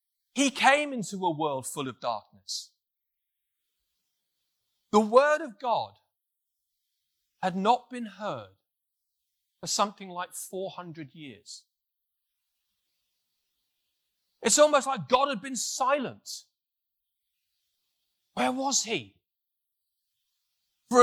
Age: 40-59